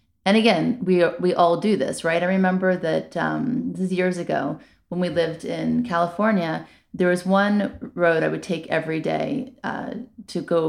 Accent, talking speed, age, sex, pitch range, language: American, 190 wpm, 30-49, female, 160-200 Hz, English